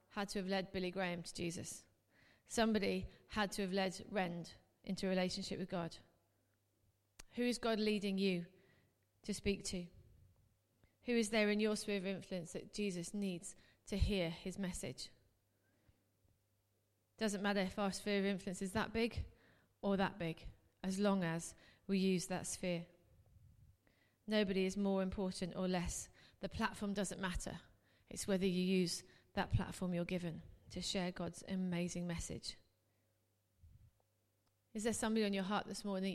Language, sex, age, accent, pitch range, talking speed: English, female, 30-49, British, 165-200 Hz, 155 wpm